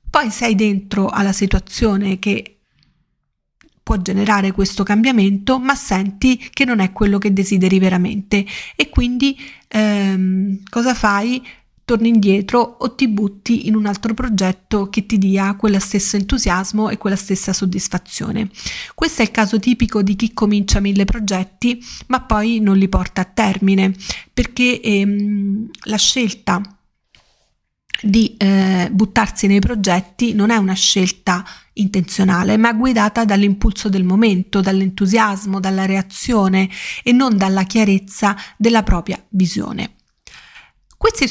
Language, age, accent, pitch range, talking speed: Italian, 40-59, native, 195-225 Hz, 130 wpm